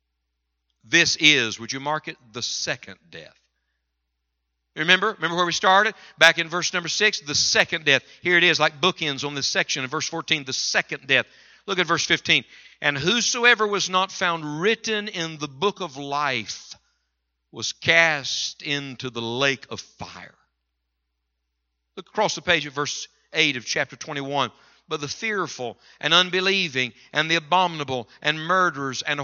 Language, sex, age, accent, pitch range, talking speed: English, male, 60-79, American, 130-185 Hz, 160 wpm